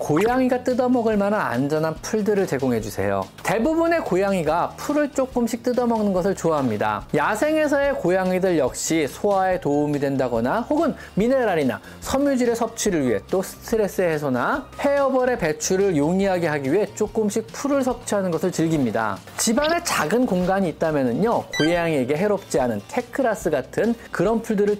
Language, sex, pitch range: Korean, male, 160-250 Hz